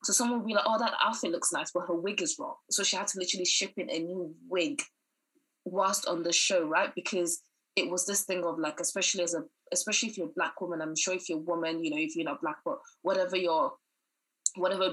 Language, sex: English, female